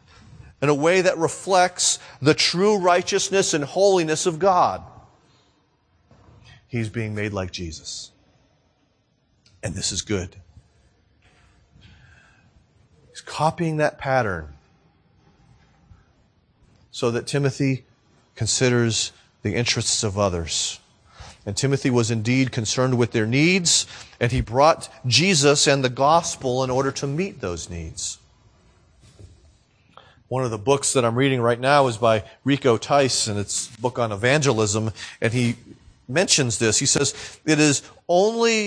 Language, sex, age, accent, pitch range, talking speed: English, male, 40-59, American, 115-155 Hz, 125 wpm